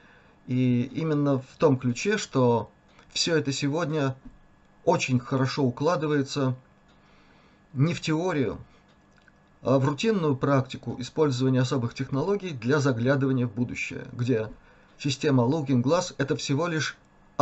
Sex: male